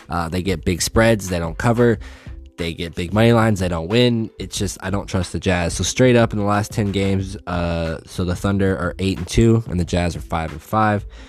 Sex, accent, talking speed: male, American, 250 wpm